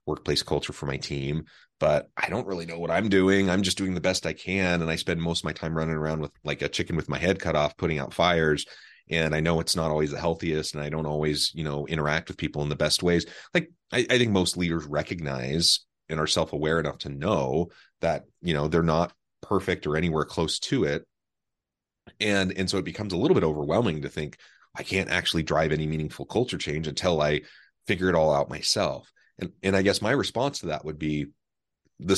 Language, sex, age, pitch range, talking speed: English, male, 30-49, 80-105 Hz, 230 wpm